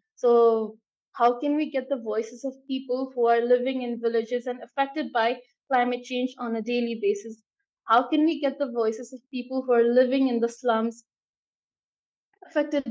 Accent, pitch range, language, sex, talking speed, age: Indian, 230-270 Hz, English, female, 175 wpm, 20-39